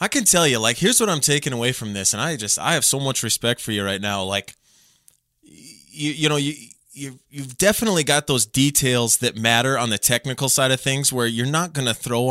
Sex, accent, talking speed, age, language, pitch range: male, American, 235 wpm, 20-39, English, 110-135 Hz